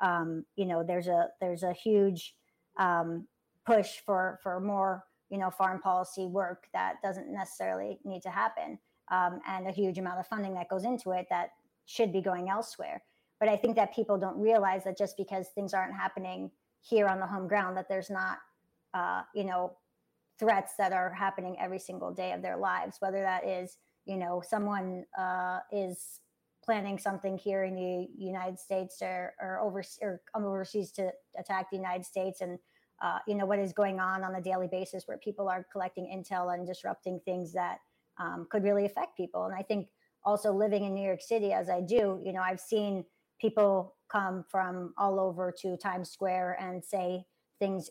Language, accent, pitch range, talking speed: English, American, 185-200 Hz, 190 wpm